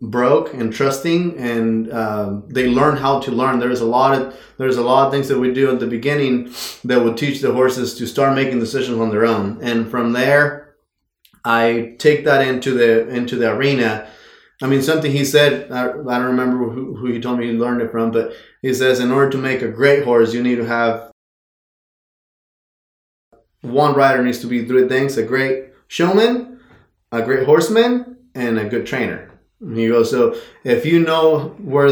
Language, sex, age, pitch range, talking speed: English, male, 20-39, 125-145 Hz, 195 wpm